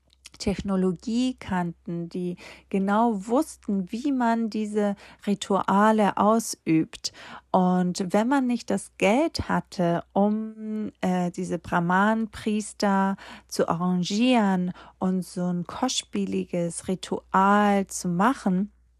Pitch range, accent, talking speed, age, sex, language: 180-215 Hz, German, 95 wpm, 30-49, female, German